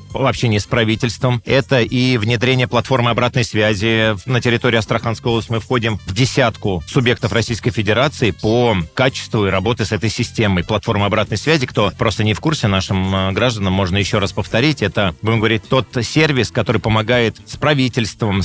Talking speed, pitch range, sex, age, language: 165 wpm, 110-125 Hz, male, 30-49, Russian